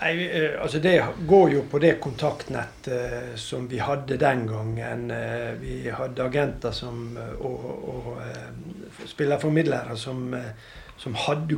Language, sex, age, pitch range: English, male, 60-79, 125-160 Hz